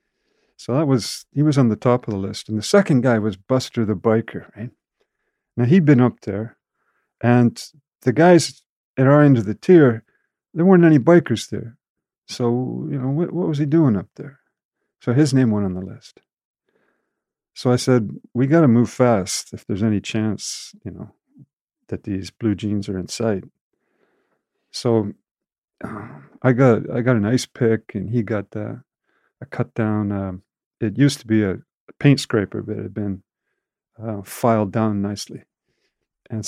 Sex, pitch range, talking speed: male, 105-135 Hz, 180 wpm